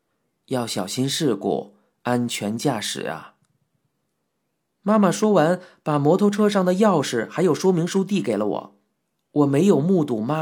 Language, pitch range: Chinese, 125-190 Hz